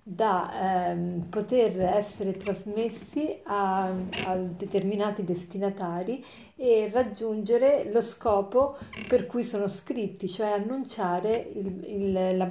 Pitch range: 190-240 Hz